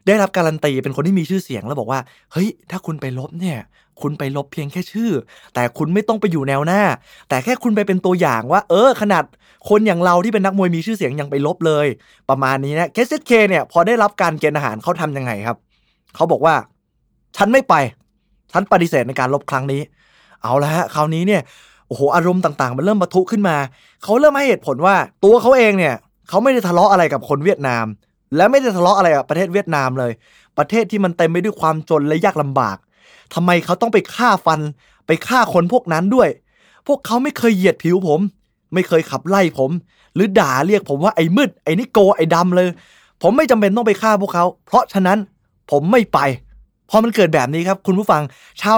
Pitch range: 145-205 Hz